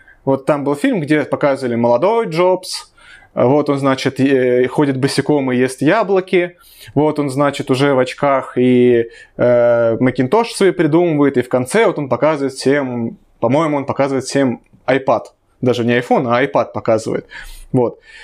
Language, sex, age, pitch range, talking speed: Russian, male, 20-39, 130-165 Hz, 155 wpm